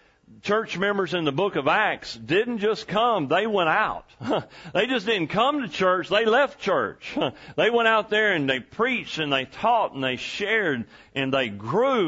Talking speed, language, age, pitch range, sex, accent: 190 wpm, English, 40-59, 115-170 Hz, male, American